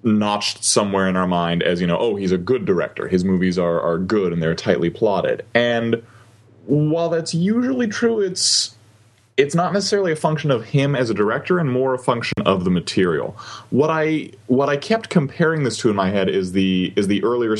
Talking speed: 210 wpm